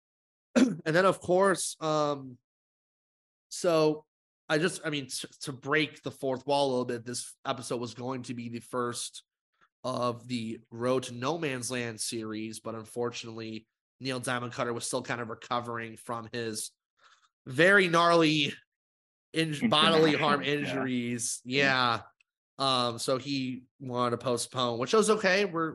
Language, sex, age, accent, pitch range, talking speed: English, male, 30-49, American, 120-145 Hz, 145 wpm